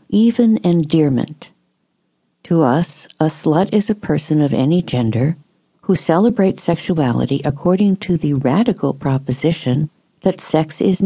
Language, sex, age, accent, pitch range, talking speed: English, female, 60-79, American, 150-190 Hz, 125 wpm